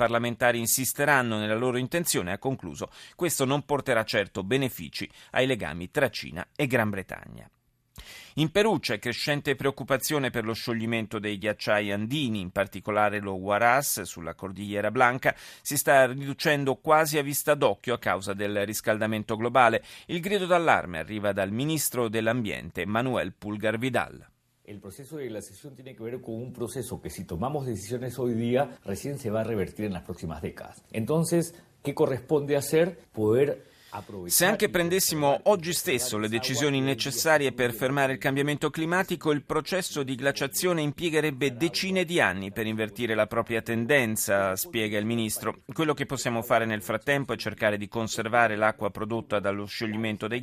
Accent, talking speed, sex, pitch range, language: native, 160 wpm, male, 105-145 Hz, Italian